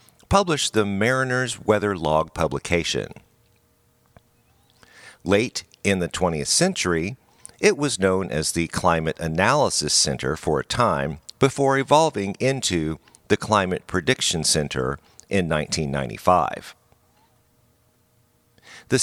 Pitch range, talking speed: 85-125 Hz, 100 wpm